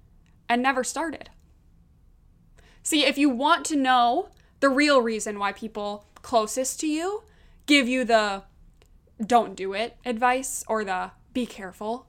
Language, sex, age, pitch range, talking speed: English, female, 20-39, 225-300 Hz, 140 wpm